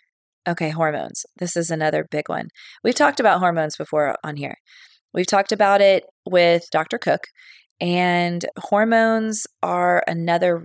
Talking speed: 140 wpm